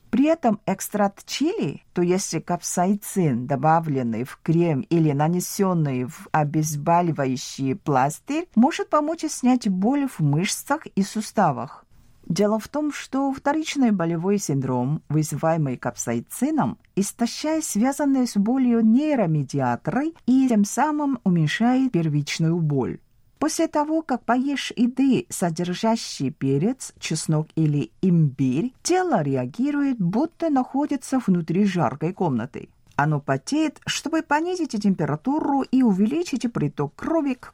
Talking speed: 110 wpm